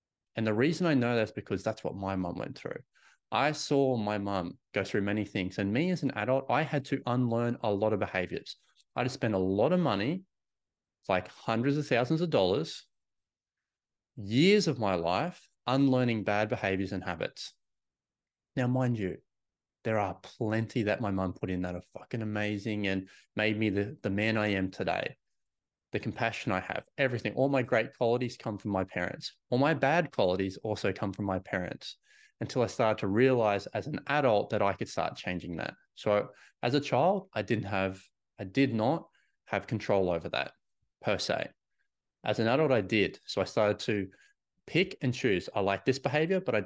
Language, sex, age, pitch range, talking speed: English, male, 30-49, 100-130 Hz, 195 wpm